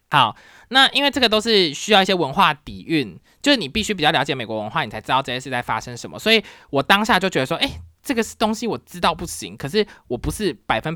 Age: 20-39